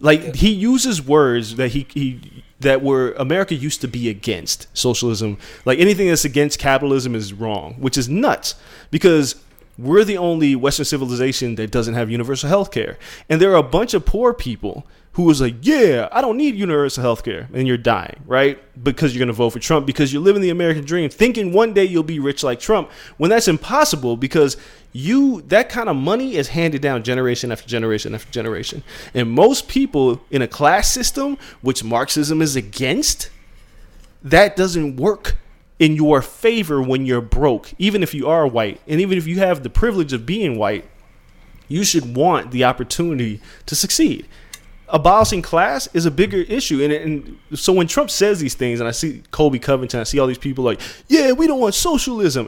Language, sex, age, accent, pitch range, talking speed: English, male, 20-39, American, 125-200 Hz, 195 wpm